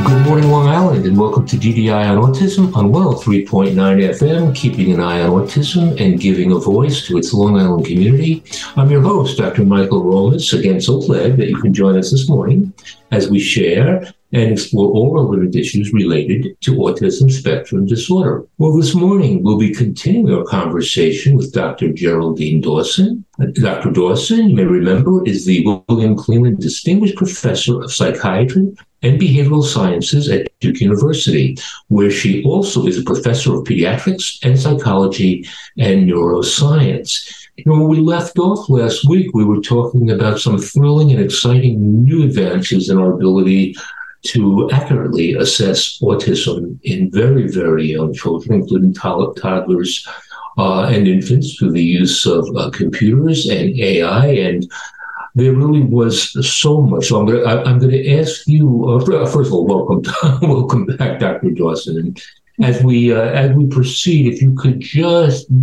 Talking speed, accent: 160 wpm, American